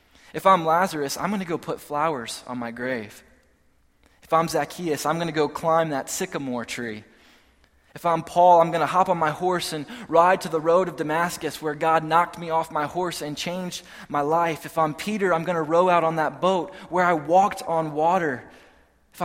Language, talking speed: English, 210 wpm